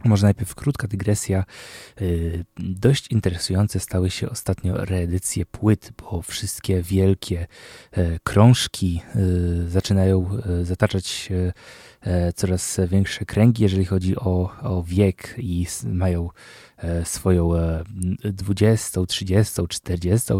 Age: 20-39